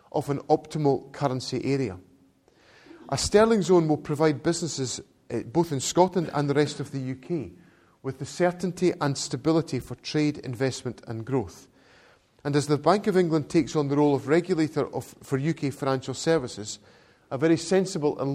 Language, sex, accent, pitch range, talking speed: English, male, British, 130-165 Hz, 165 wpm